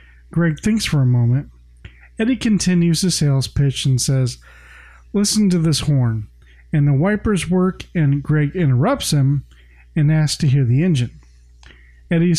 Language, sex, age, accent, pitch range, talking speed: English, male, 50-69, American, 125-180 Hz, 150 wpm